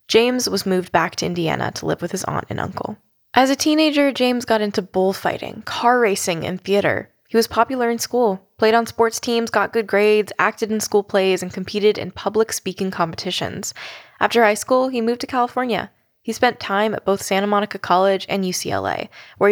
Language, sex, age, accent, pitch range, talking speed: English, female, 10-29, American, 185-230 Hz, 195 wpm